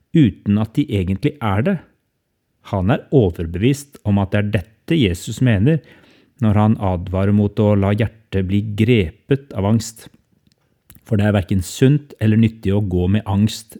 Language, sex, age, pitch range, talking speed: English, male, 30-49, 95-120 Hz, 165 wpm